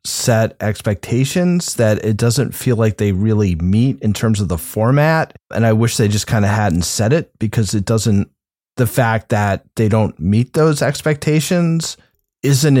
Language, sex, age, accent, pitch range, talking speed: English, male, 30-49, American, 105-130 Hz, 175 wpm